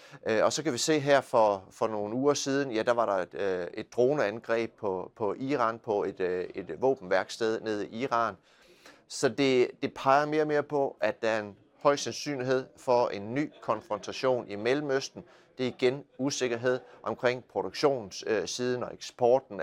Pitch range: 115-145 Hz